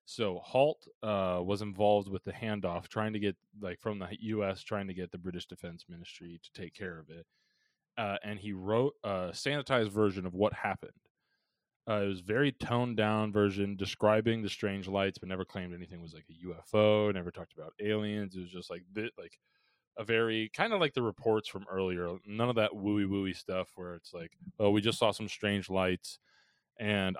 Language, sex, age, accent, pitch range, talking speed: English, male, 20-39, American, 90-110 Hz, 200 wpm